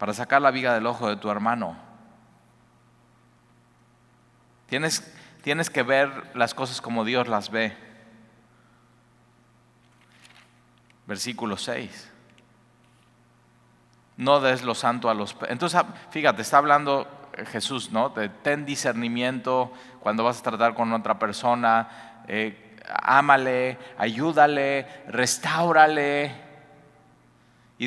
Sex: male